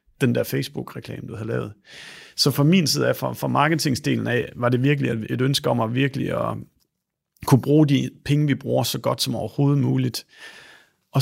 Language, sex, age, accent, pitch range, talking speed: English, male, 40-59, Danish, 115-145 Hz, 195 wpm